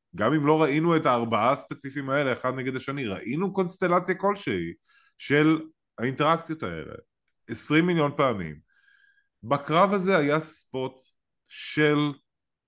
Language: English